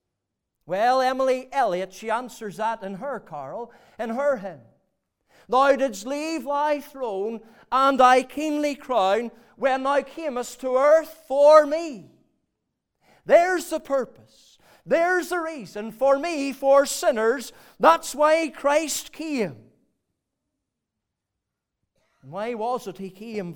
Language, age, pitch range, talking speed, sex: English, 50-69, 225-290 Hz, 120 wpm, male